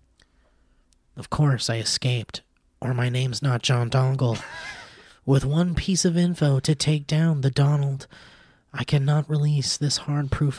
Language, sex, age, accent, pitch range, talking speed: English, male, 30-49, American, 125-180 Hz, 145 wpm